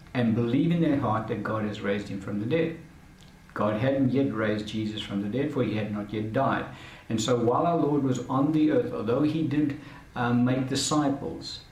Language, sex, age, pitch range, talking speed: English, male, 60-79, 110-135 Hz, 215 wpm